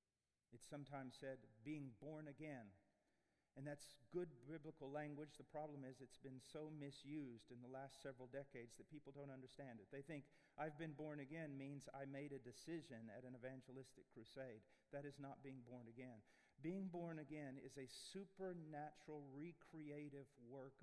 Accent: American